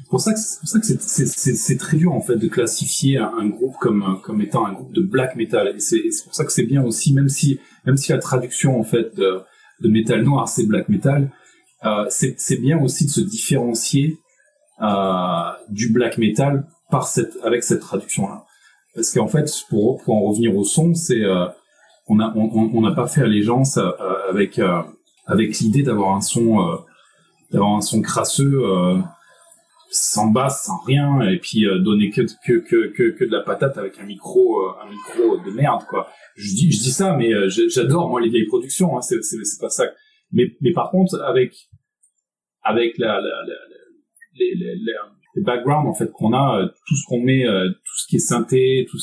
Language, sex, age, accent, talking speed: French, male, 30-49, French, 210 wpm